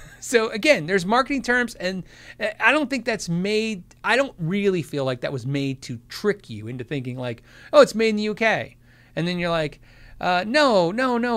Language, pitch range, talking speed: English, 135-205 Hz, 205 wpm